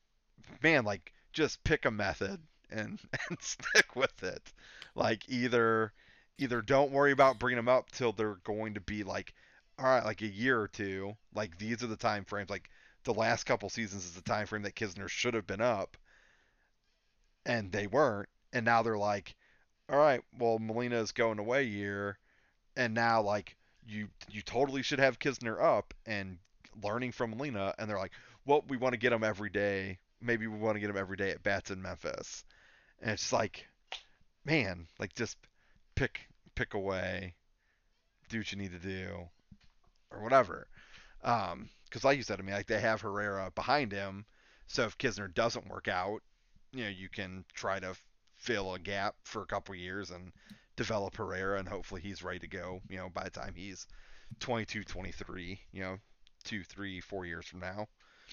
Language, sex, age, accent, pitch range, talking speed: English, male, 30-49, American, 95-115 Hz, 185 wpm